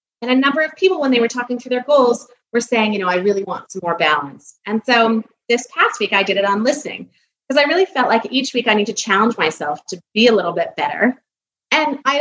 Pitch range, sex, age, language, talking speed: 175-245 Hz, female, 30-49, English, 255 wpm